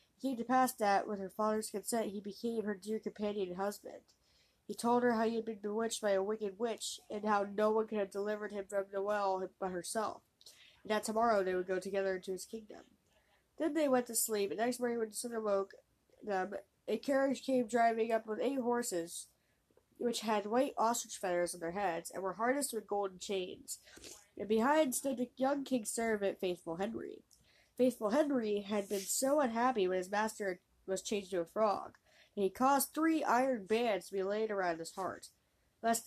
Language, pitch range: English, 200-250 Hz